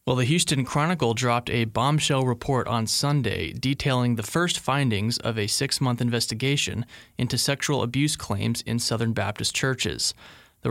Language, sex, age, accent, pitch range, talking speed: English, male, 30-49, American, 110-130 Hz, 150 wpm